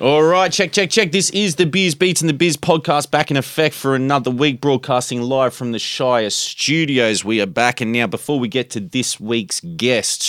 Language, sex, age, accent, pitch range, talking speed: English, male, 20-39, Australian, 100-135 Hz, 220 wpm